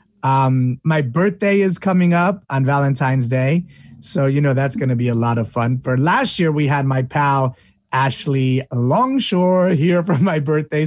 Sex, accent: male, American